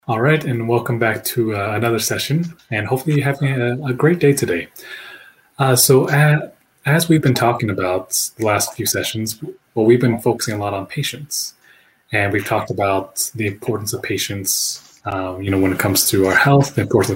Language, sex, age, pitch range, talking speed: English, male, 20-39, 105-130 Hz, 200 wpm